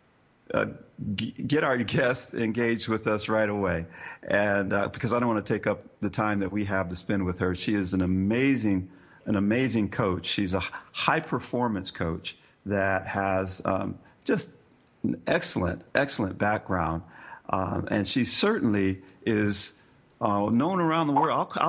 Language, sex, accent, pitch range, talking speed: English, male, American, 95-115 Hz, 170 wpm